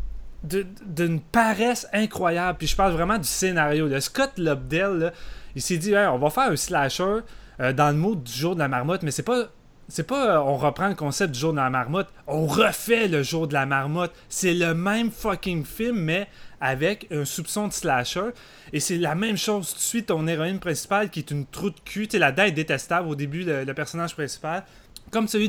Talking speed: 215 wpm